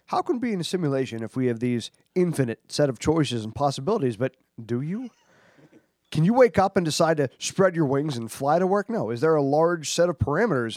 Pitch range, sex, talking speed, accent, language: 125-175 Hz, male, 235 wpm, American, English